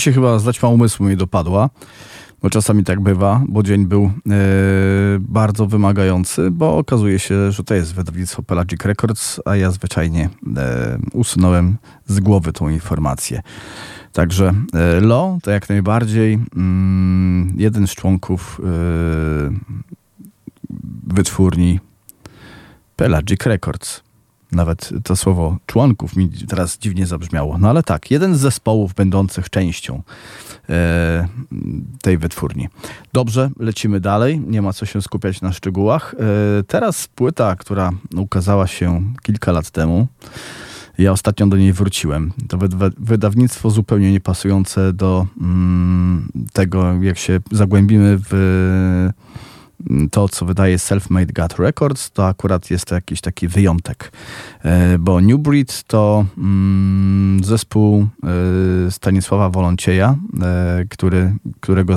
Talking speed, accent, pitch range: 115 wpm, native, 90-105 Hz